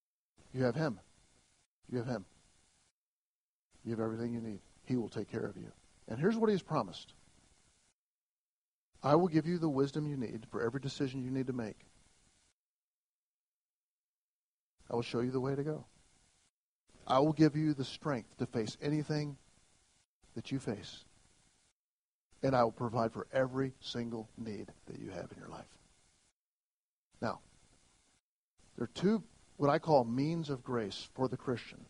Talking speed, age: 160 wpm, 50-69